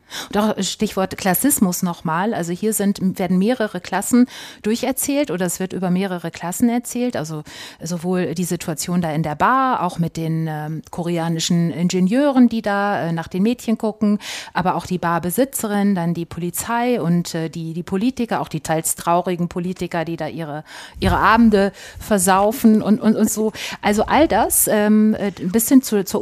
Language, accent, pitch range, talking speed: German, German, 170-210 Hz, 160 wpm